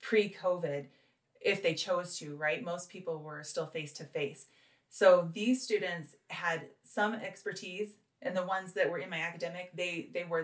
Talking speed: 170 wpm